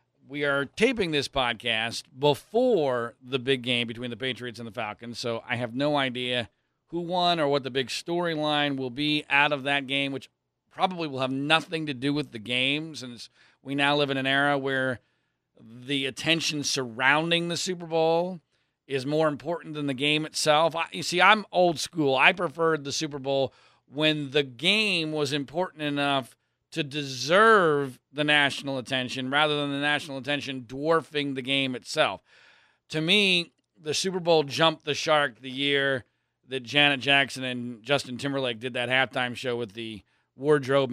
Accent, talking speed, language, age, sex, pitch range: American, 170 wpm, English, 40-59, male, 125-150 Hz